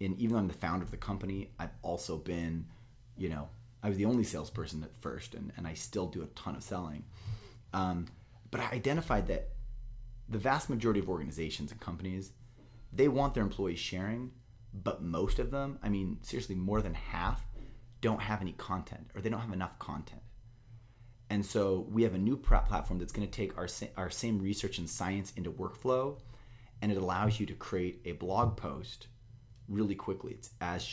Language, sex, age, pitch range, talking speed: English, male, 30-49, 90-115 Hz, 195 wpm